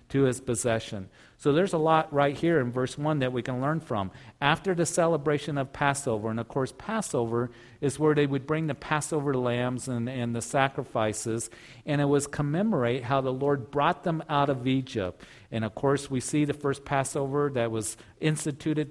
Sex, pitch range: male, 120-145 Hz